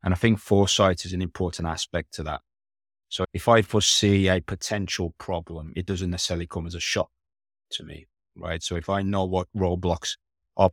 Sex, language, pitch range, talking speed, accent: male, English, 80-90 Hz, 190 wpm, British